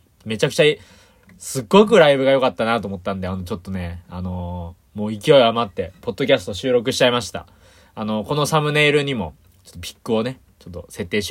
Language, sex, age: Japanese, male, 20-39